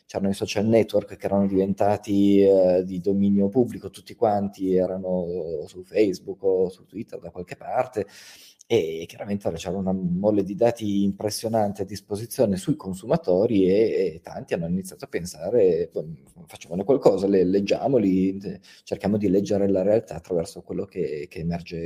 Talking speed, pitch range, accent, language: 155 wpm, 95-125 Hz, native, Italian